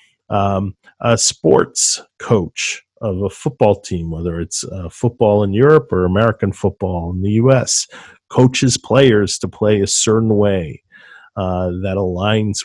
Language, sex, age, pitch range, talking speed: English, male, 40-59, 100-120 Hz, 140 wpm